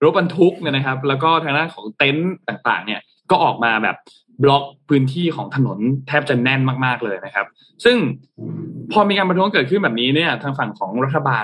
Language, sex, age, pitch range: Thai, male, 20-39, 120-160 Hz